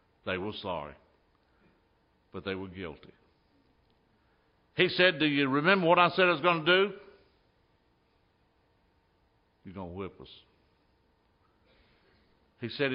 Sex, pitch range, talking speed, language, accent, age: male, 90-135 Hz, 125 wpm, English, American, 60-79